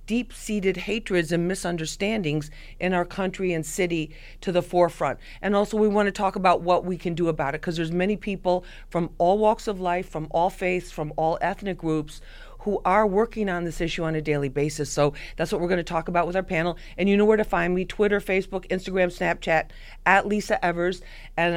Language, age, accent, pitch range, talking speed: English, 40-59, American, 160-195 Hz, 210 wpm